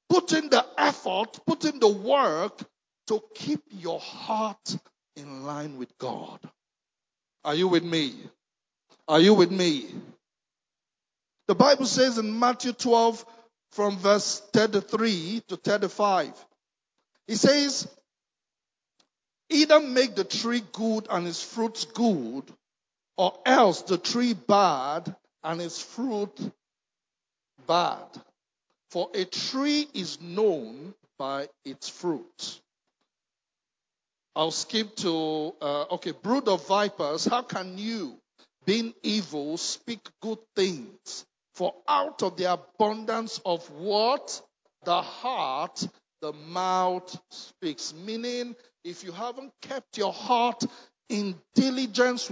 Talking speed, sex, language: 115 wpm, male, English